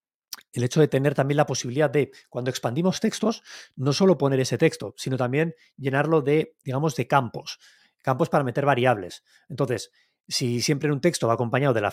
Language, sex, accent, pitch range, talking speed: Spanish, male, Spanish, 125-150 Hz, 180 wpm